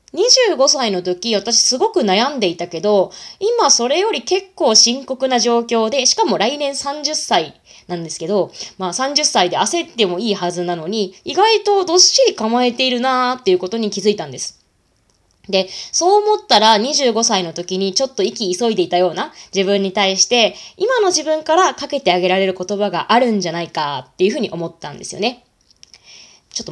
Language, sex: Japanese, female